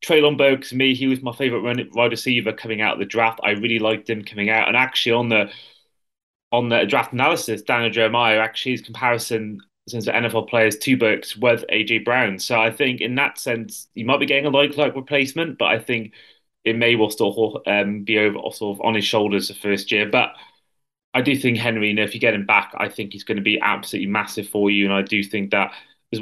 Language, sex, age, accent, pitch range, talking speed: English, male, 20-39, British, 110-130 Hz, 235 wpm